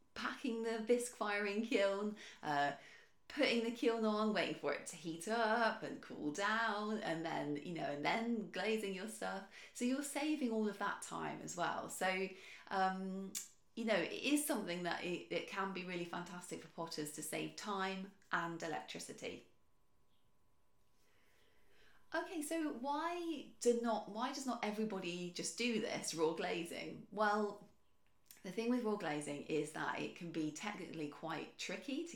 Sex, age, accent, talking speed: female, 30-49, British, 160 wpm